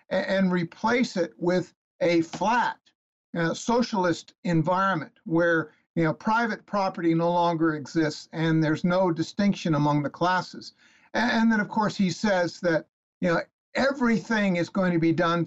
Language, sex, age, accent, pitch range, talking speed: English, male, 60-79, American, 165-200 Hz, 155 wpm